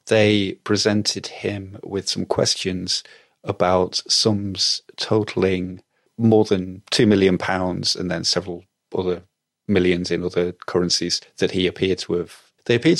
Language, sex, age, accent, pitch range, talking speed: English, male, 30-49, British, 90-110 Hz, 135 wpm